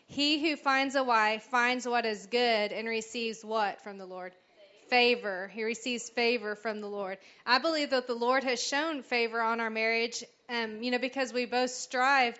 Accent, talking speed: American, 195 wpm